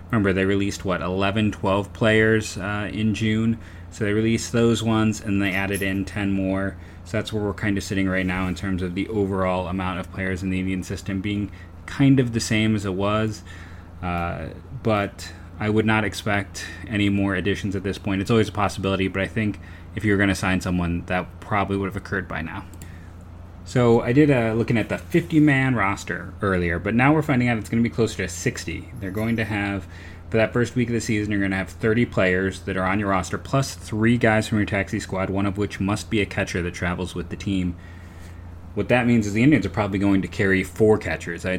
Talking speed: 230 wpm